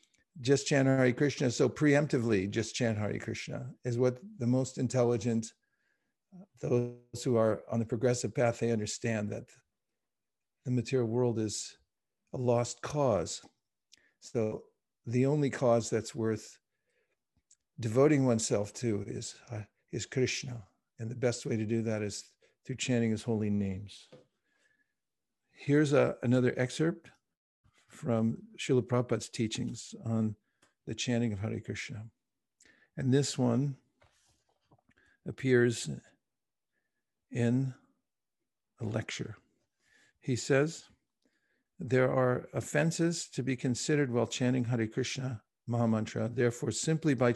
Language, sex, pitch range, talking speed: English, male, 115-130 Hz, 120 wpm